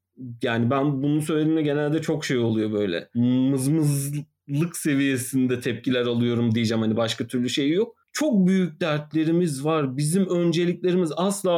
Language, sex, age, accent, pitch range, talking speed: Turkish, male, 40-59, native, 130-190 Hz, 135 wpm